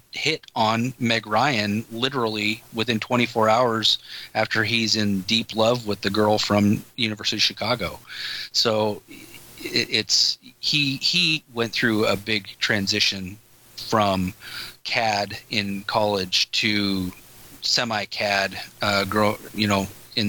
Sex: male